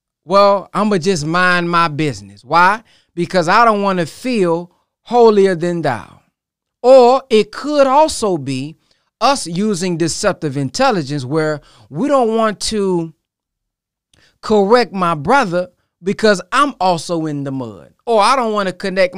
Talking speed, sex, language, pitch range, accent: 145 wpm, male, English, 140-200 Hz, American